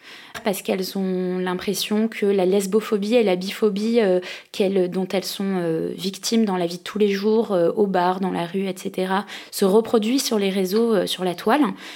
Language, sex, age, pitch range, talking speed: French, female, 20-39, 190-230 Hz, 195 wpm